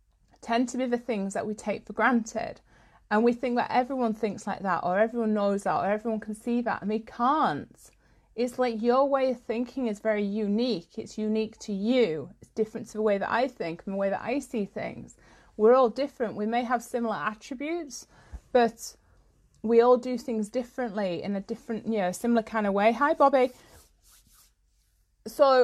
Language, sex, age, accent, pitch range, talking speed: English, female, 30-49, British, 215-255 Hz, 195 wpm